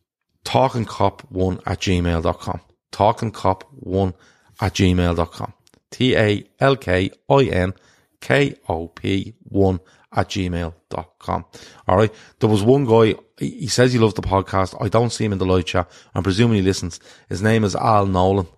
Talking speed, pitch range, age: 160 wpm, 90-110 Hz, 30-49